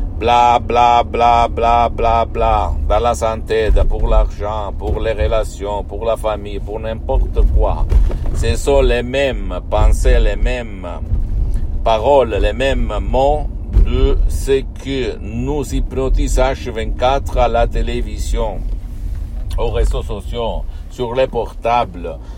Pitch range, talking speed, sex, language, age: 90-120 Hz, 125 wpm, male, Italian, 60-79